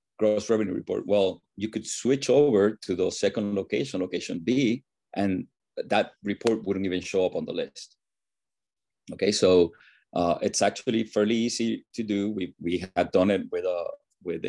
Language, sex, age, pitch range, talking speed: English, male, 30-49, 90-105 Hz, 170 wpm